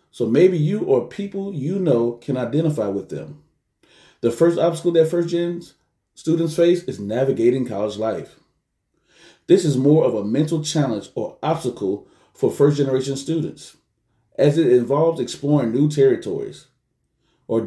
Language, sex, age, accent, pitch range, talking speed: English, male, 30-49, American, 125-165 Hz, 140 wpm